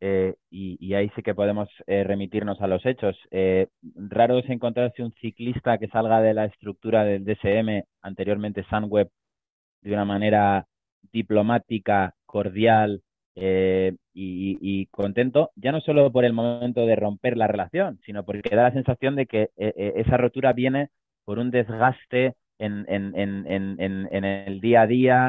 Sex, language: male, Spanish